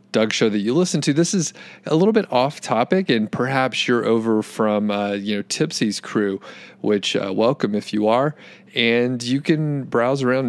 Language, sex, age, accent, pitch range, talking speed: English, male, 30-49, American, 105-130 Hz, 195 wpm